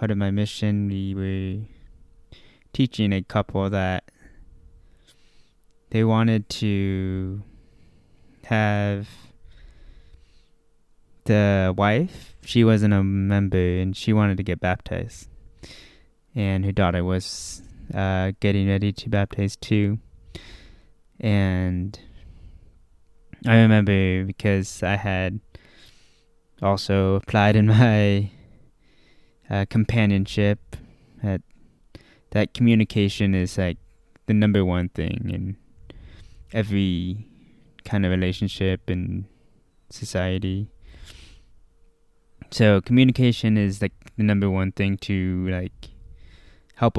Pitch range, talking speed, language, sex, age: 90-105 Hz, 95 wpm, English, male, 20-39